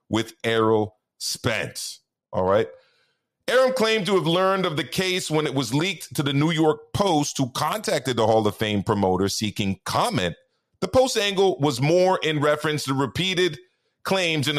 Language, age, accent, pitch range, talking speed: English, 40-59, American, 110-165 Hz, 175 wpm